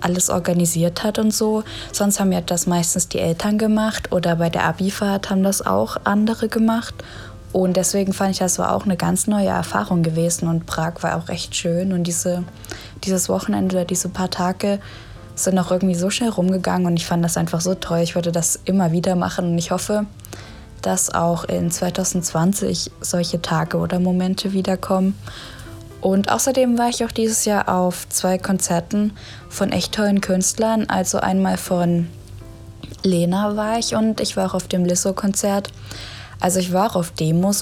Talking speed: 180 wpm